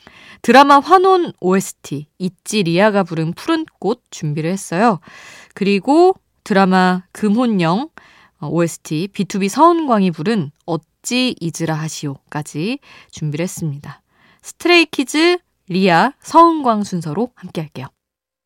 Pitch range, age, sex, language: 155-215 Hz, 20-39, female, Korean